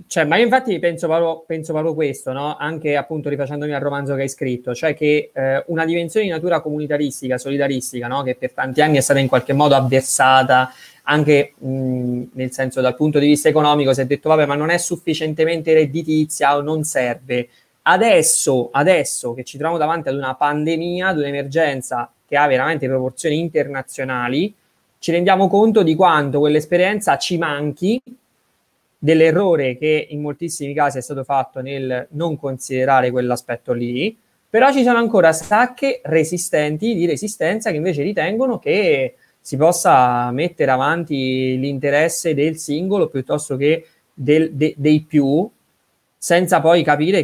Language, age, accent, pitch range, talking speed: Italian, 20-39, native, 135-165 Hz, 155 wpm